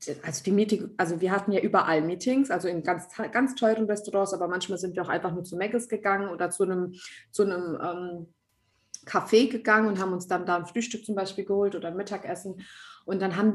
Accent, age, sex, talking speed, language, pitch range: German, 30-49, female, 215 wpm, German, 190-235 Hz